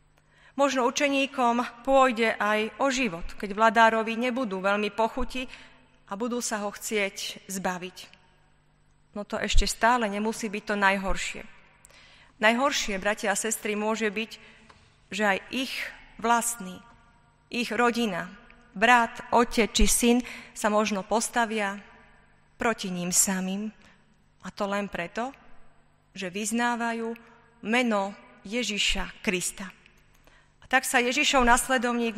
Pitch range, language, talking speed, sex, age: 205-245 Hz, Slovak, 110 wpm, female, 30-49